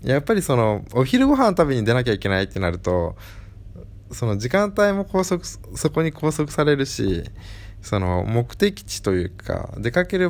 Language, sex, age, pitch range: Japanese, male, 20-39, 100-125 Hz